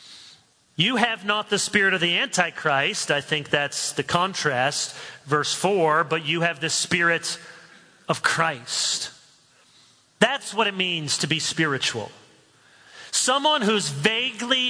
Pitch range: 160-210 Hz